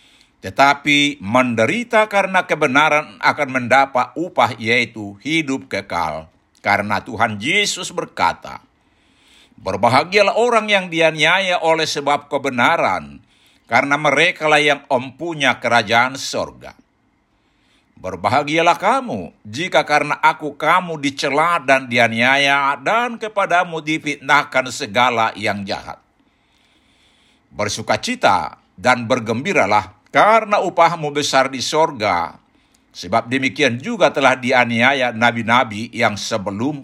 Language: Indonesian